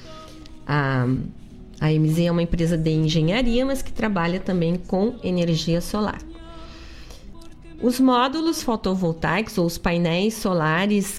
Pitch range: 160-215 Hz